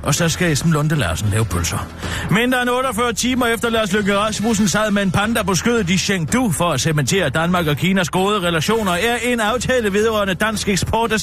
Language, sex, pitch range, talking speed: Danish, male, 140-210 Hz, 205 wpm